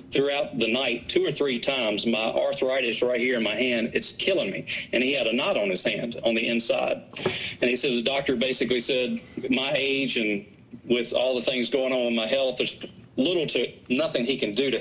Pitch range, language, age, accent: 120-150 Hz, English, 40-59, American